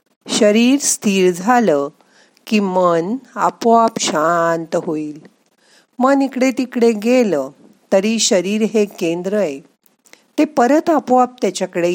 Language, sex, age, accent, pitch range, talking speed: Marathi, female, 50-69, native, 180-245 Hz, 105 wpm